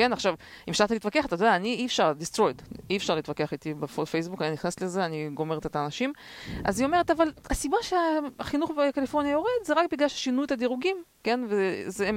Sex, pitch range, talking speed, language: female, 170-245 Hz, 190 wpm, Hebrew